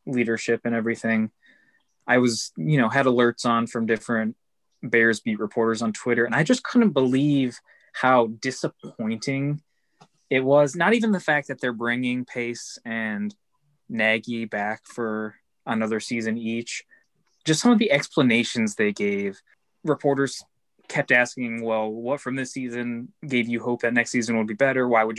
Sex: male